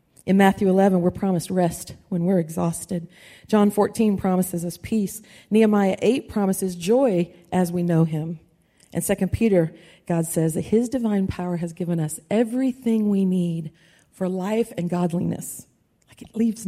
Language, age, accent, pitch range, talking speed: English, 40-59, American, 175-215 Hz, 160 wpm